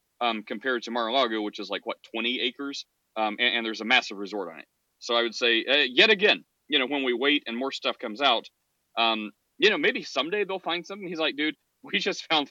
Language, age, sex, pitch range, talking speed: English, 30-49, male, 115-150 Hz, 240 wpm